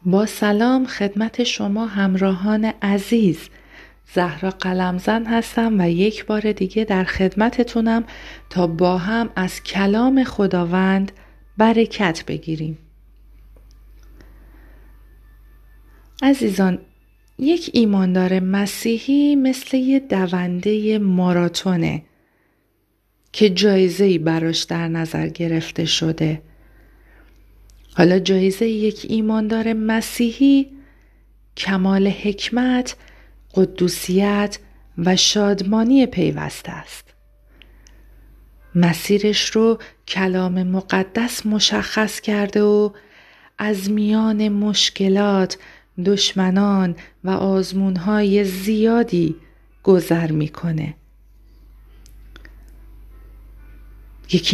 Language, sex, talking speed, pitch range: Persian, female, 75 wpm, 175-215 Hz